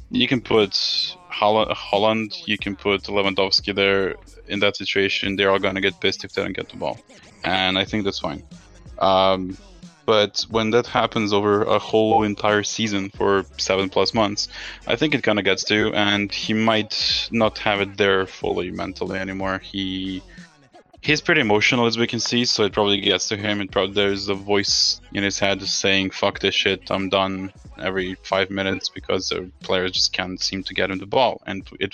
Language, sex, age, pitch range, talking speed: English, male, 20-39, 95-110 Hz, 195 wpm